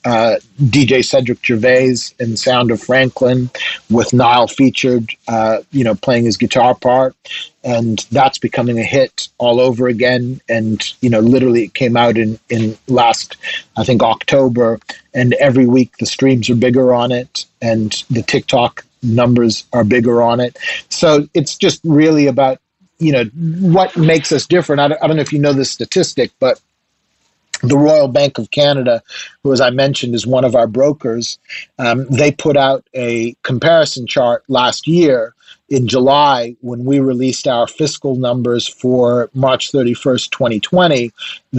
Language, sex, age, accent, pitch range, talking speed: English, male, 40-59, American, 120-140 Hz, 165 wpm